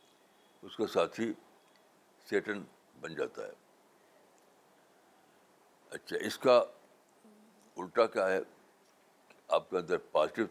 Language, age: Urdu, 60-79